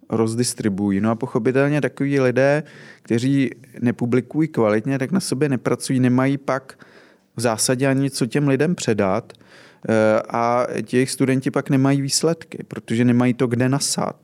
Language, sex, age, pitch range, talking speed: Czech, male, 30-49, 110-125 Hz, 135 wpm